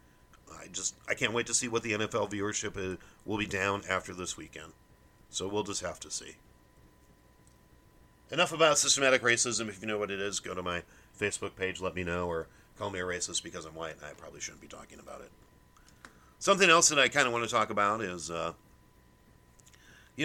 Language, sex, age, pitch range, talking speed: English, male, 40-59, 95-120 Hz, 205 wpm